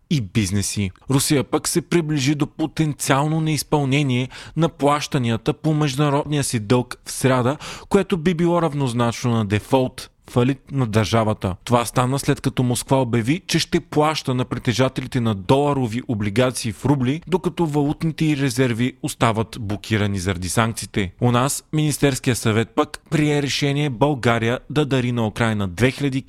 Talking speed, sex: 145 wpm, male